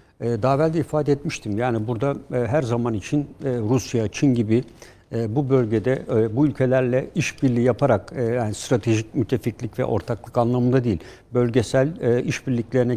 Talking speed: 130 wpm